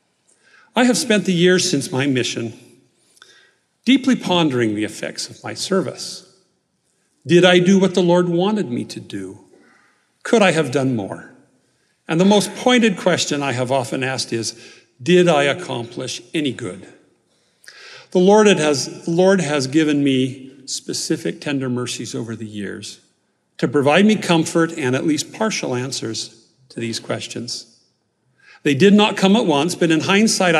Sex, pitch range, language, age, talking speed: male, 120-185 Hz, English, 50-69, 150 wpm